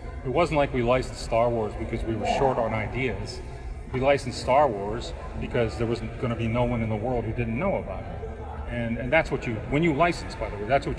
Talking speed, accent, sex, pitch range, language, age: 250 wpm, American, male, 110-140 Hz, English, 40-59